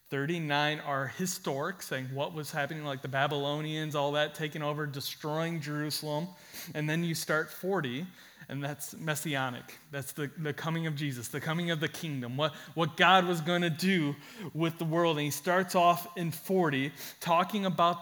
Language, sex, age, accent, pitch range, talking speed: English, male, 30-49, American, 150-190 Hz, 175 wpm